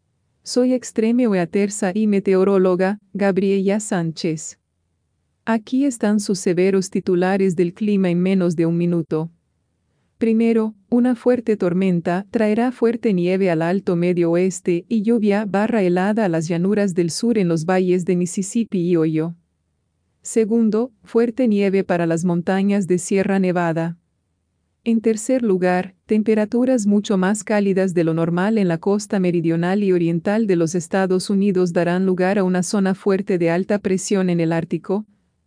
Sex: female